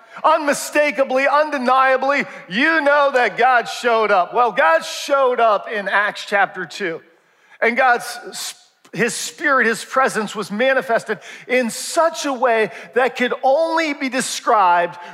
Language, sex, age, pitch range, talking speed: English, male, 40-59, 200-255 Hz, 130 wpm